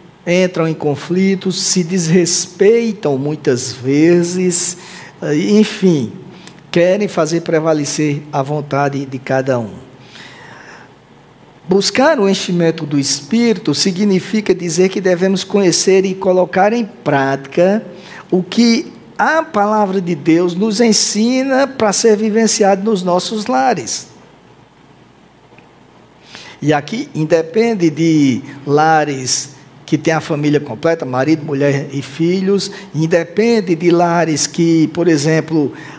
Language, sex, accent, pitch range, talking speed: Portuguese, male, Brazilian, 150-190 Hz, 105 wpm